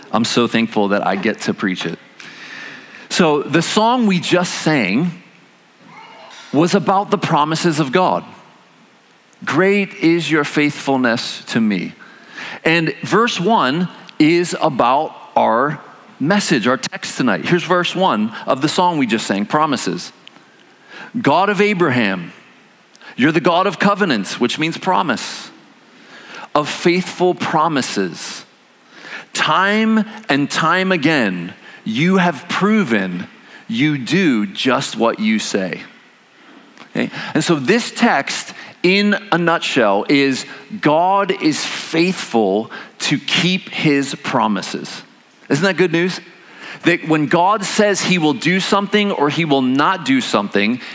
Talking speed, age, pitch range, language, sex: 125 wpm, 40-59, 150-205 Hz, English, male